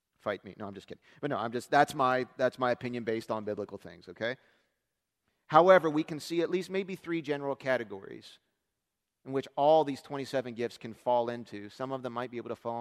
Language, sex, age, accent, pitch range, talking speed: English, male, 40-59, American, 125-175 Hz, 220 wpm